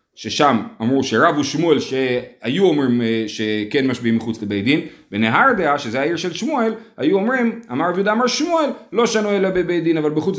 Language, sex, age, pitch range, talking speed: Hebrew, male, 30-49, 145-230 Hz, 160 wpm